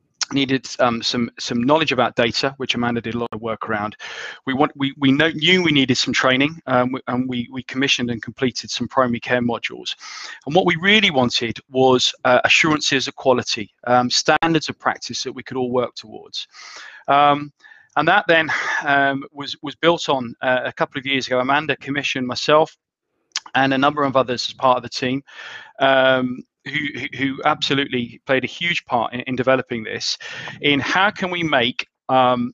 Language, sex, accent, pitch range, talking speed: English, male, British, 125-145 Hz, 190 wpm